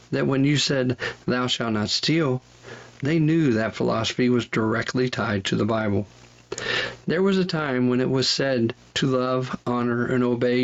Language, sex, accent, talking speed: English, male, American, 175 wpm